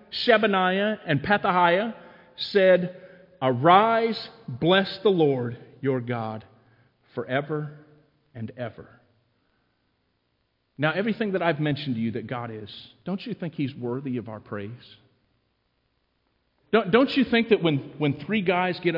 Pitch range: 130-165 Hz